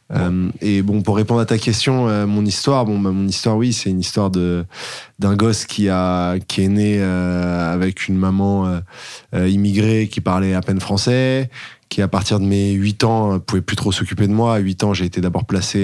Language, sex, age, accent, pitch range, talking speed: French, male, 20-39, French, 90-110 Hz, 220 wpm